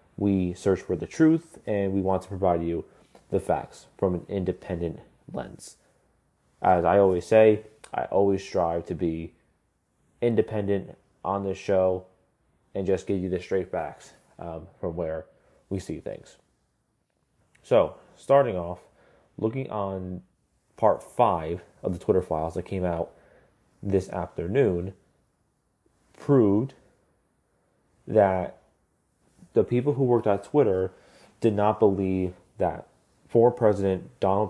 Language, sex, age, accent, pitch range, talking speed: English, male, 30-49, American, 90-110 Hz, 125 wpm